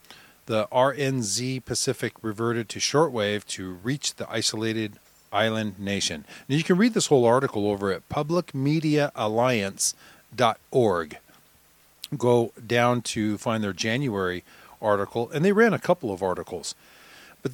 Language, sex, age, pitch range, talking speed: English, male, 40-59, 105-135 Hz, 125 wpm